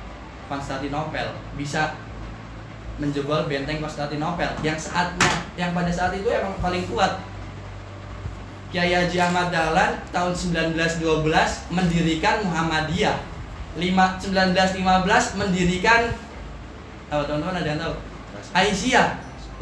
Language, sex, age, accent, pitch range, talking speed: Indonesian, male, 20-39, native, 145-190 Hz, 95 wpm